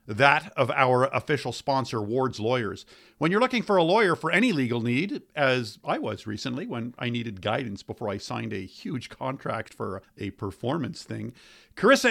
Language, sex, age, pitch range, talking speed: English, male, 50-69, 110-140 Hz, 180 wpm